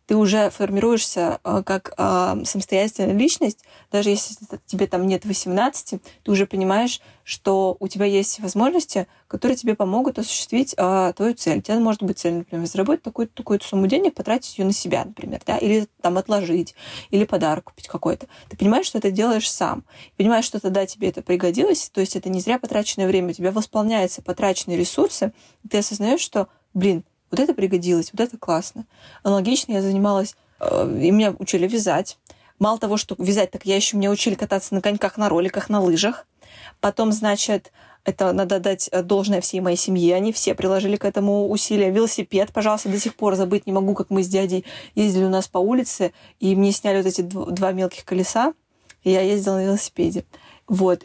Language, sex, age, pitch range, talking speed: Russian, female, 20-39, 190-220 Hz, 185 wpm